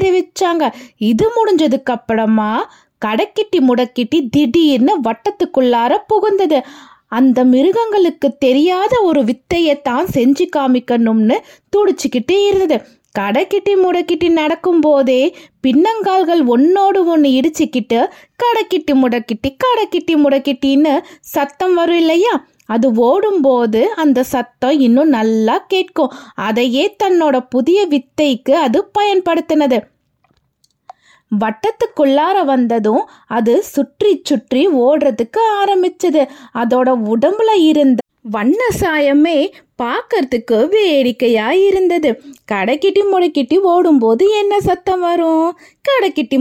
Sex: female